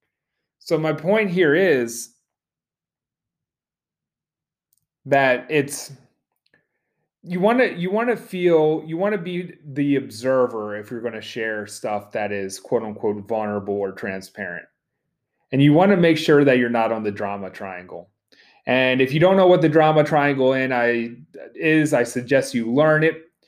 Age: 30-49